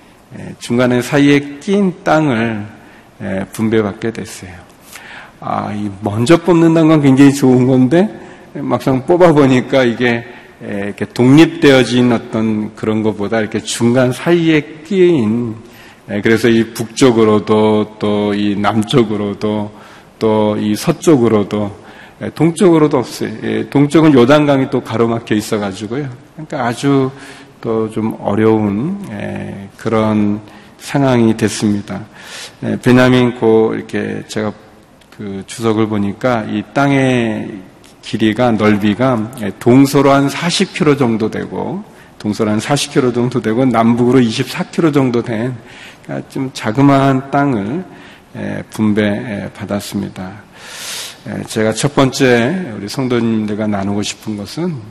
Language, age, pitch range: Korean, 40-59, 105-140 Hz